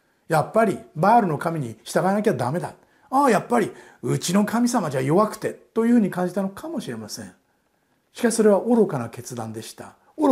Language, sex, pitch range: Japanese, male, 140-200 Hz